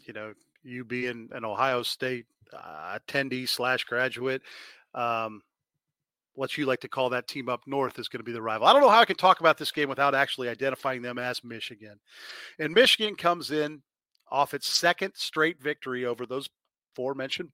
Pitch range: 120-150 Hz